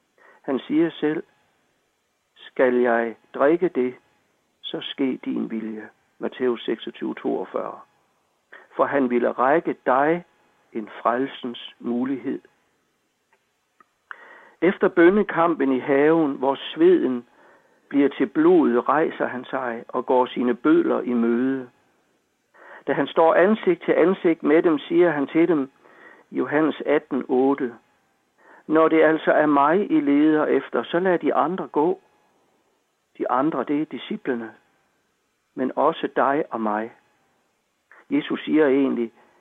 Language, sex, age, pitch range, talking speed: Danish, male, 60-79, 130-195 Hz, 120 wpm